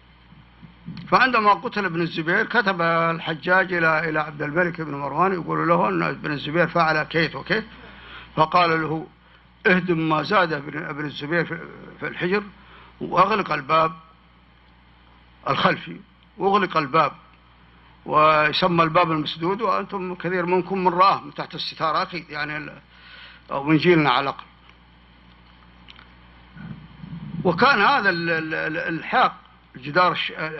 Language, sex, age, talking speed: English, male, 50-69, 110 wpm